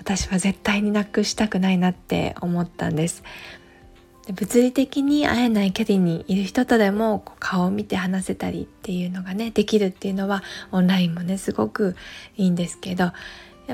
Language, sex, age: Japanese, female, 20-39